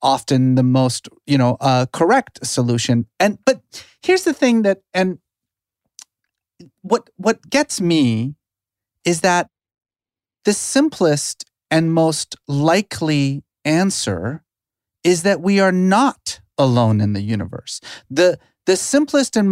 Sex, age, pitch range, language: male, 30-49, 145-205 Hz, English